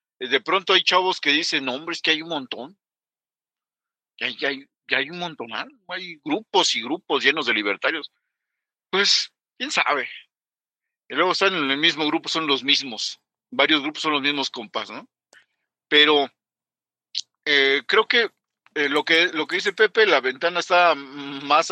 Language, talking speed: Spanish, 175 wpm